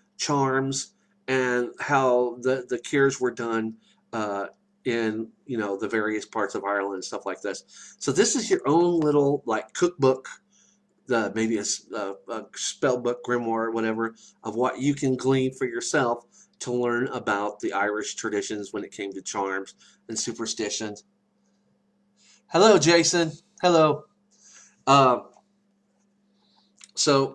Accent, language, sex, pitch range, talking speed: American, English, male, 125-200 Hz, 140 wpm